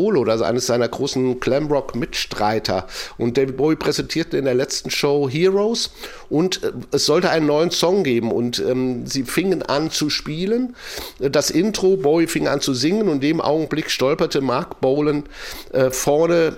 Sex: male